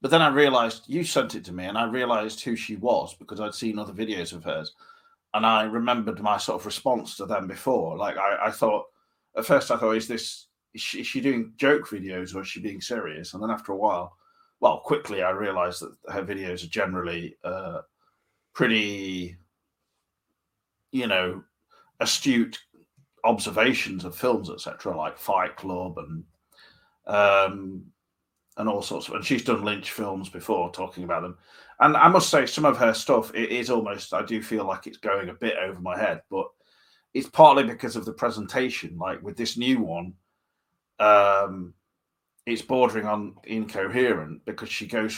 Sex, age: male, 40-59